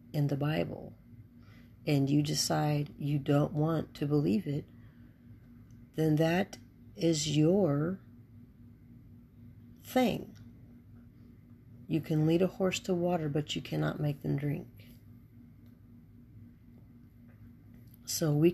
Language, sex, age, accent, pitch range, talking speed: English, female, 40-59, American, 120-155 Hz, 105 wpm